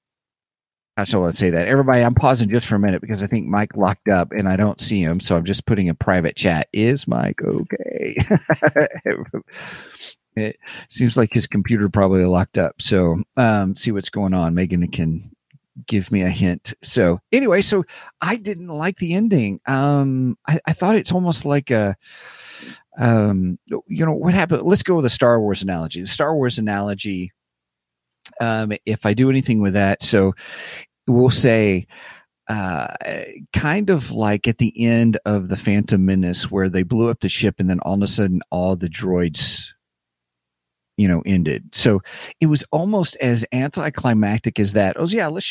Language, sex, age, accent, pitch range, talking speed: English, male, 40-59, American, 95-130 Hz, 180 wpm